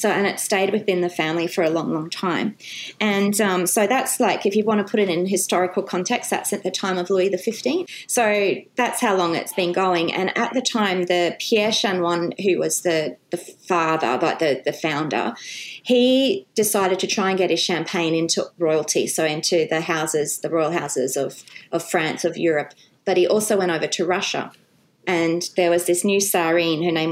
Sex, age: female, 30-49